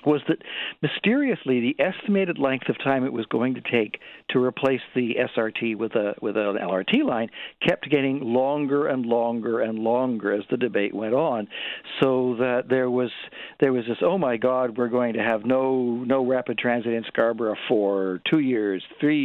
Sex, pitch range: male, 115-130 Hz